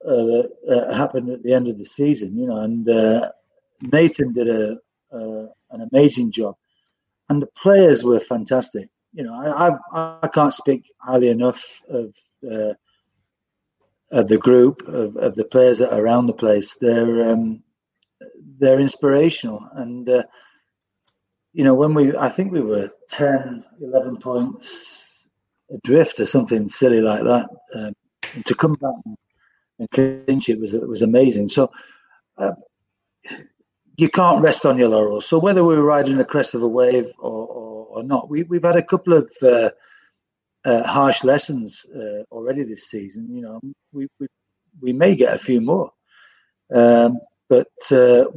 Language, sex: English, male